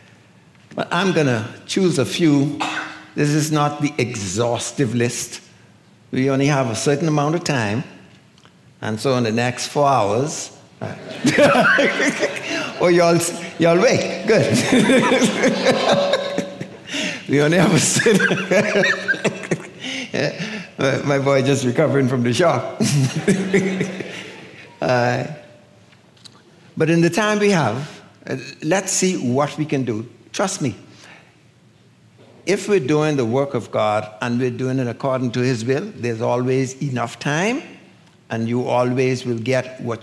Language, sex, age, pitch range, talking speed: English, male, 60-79, 120-170 Hz, 130 wpm